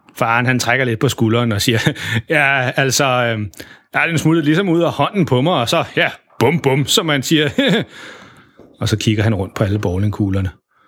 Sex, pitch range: male, 115-150 Hz